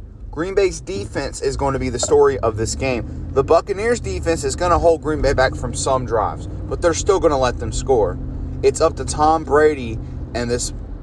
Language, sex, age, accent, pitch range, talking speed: English, male, 30-49, American, 110-170 Hz, 220 wpm